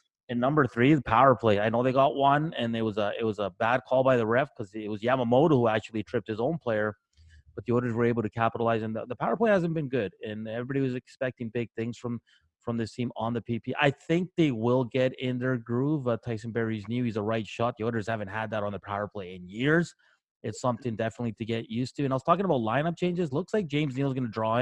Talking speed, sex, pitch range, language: 265 wpm, male, 110-130 Hz, English